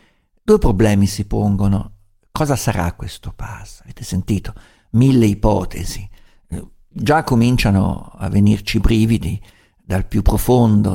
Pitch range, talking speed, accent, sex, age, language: 100-125 Hz, 115 wpm, native, male, 50-69, Italian